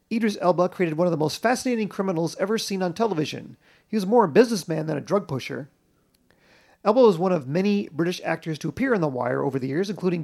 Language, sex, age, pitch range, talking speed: English, male, 40-59, 160-200 Hz, 225 wpm